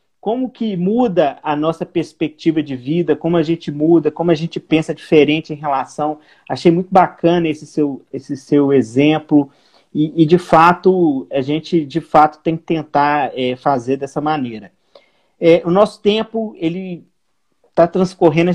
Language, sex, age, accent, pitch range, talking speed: Portuguese, male, 40-59, Brazilian, 155-205 Hz, 160 wpm